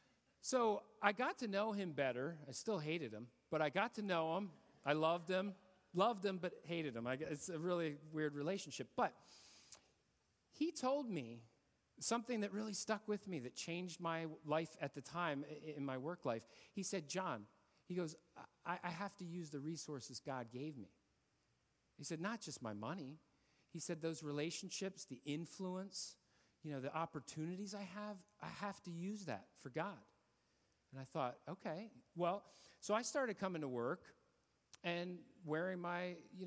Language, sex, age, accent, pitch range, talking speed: English, male, 40-59, American, 135-185 Hz, 175 wpm